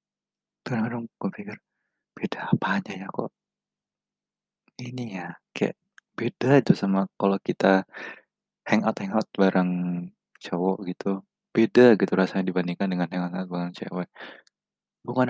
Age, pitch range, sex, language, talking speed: 20-39, 95-120 Hz, male, Indonesian, 110 wpm